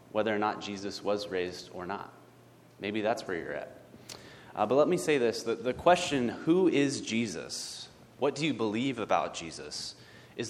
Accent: American